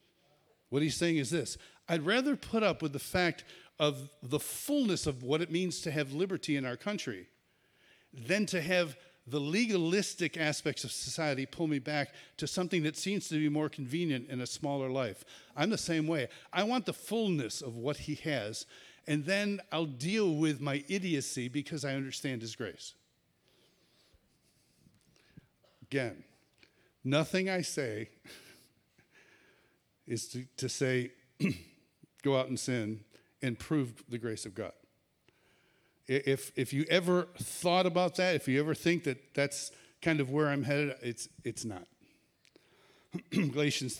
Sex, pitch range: male, 130-165 Hz